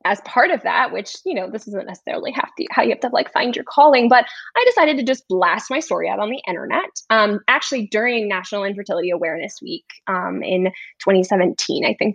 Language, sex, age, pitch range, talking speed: English, female, 10-29, 210-310 Hz, 205 wpm